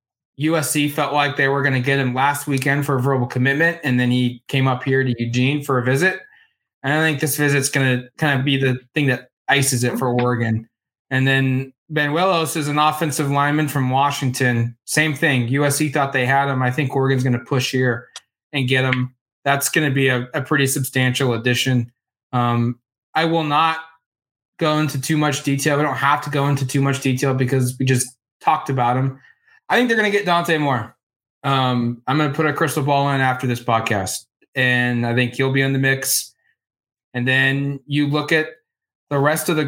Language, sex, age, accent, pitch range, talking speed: English, male, 20-39, American, 130-155 Hz, 210 wpm